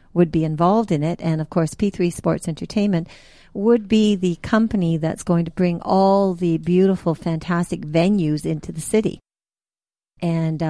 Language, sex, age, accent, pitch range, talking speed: English, female, 50-69, American, 165-205 Hz, 155 wpm